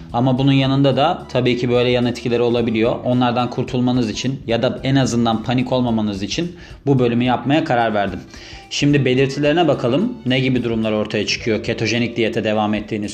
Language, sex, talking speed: Turkish, male, 170 wpm